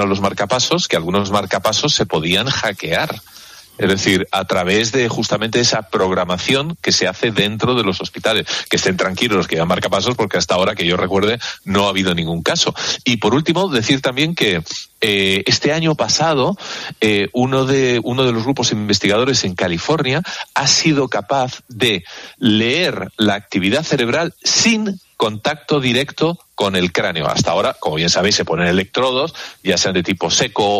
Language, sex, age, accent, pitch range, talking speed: Spanish, male, 40-59, Spanish, 100-140 Hz, 170 wpm